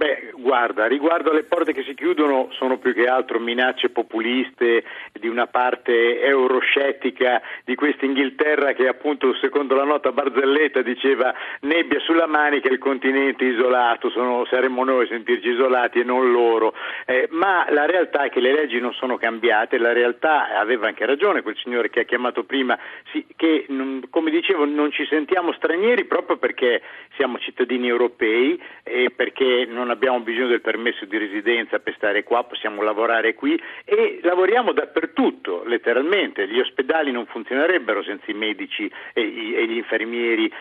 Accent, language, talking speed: native, Italian, 165 wpm